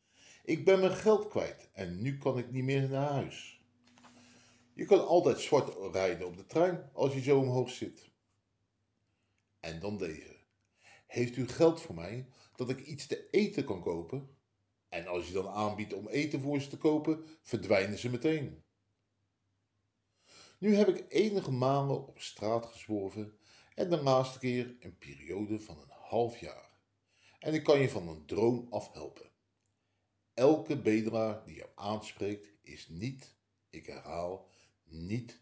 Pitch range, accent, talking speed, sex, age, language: 100-135 Hz, Dutch, 155 wpm, male, 50-69, Dutch